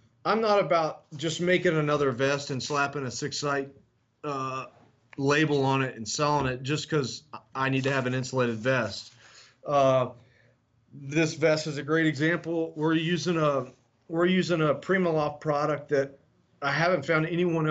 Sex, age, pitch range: male, 40-59, 125-155 Hz